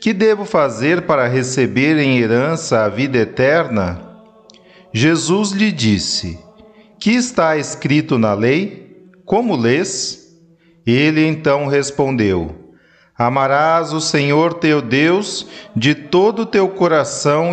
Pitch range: 125-195 Hz